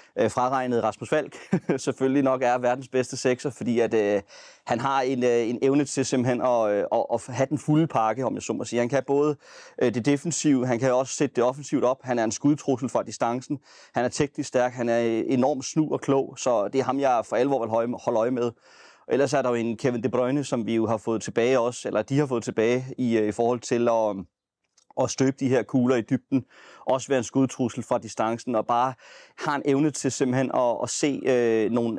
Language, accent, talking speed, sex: Danish, native, 225 wpm, male